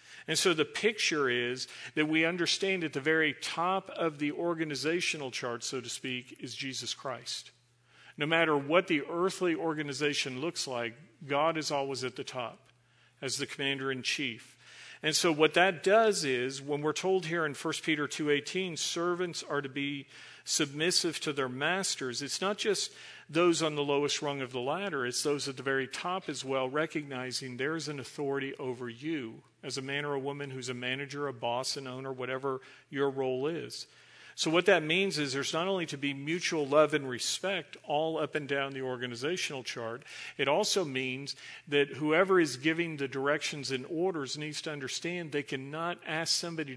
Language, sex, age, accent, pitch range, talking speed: English, male, 50-69, American, 135-165 Hz, 185 wpm